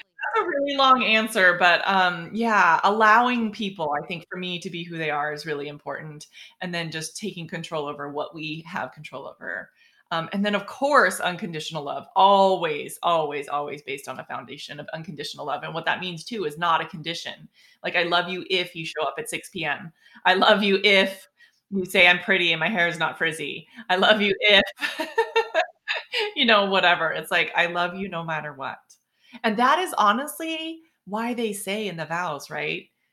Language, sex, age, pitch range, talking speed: English, female, 20-39, 160-210 Hz, 195 wpm